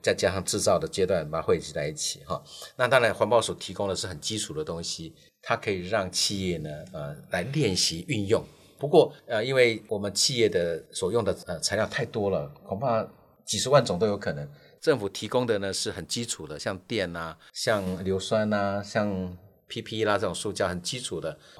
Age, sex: 50-69, male